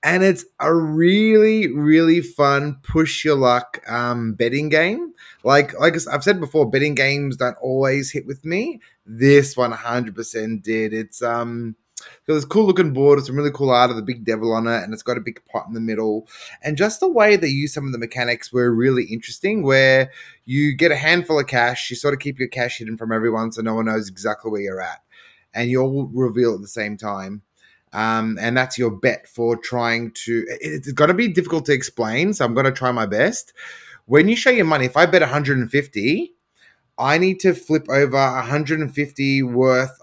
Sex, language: male, English